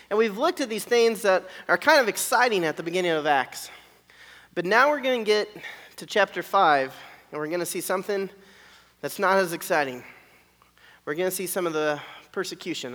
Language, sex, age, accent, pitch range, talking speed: English, male, 30-49, American, 145-205 Hz, 200 wpm